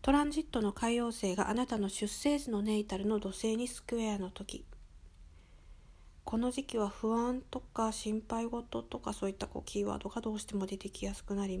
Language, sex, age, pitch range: Japanese, female, 40-59, 180-235 Hz